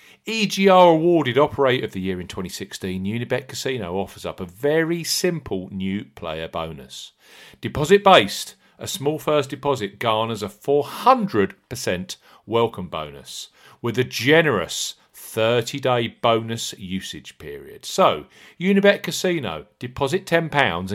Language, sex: English, male